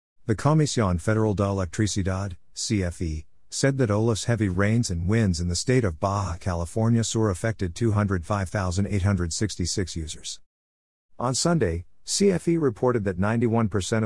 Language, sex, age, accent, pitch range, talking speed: English, male, 50-69, American, 90-110 Hz, 125 wpm